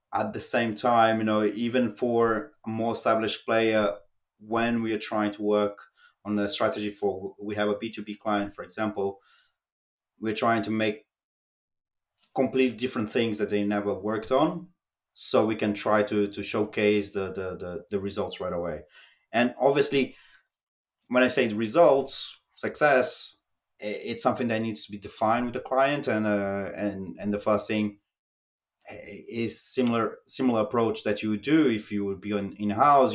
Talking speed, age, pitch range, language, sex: 170 wpm, 30-49, 105-120 Hz, English, male